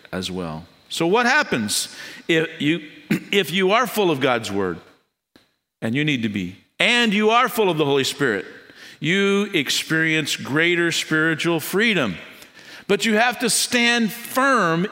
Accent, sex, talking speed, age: American, male, 155 wpm, 50-69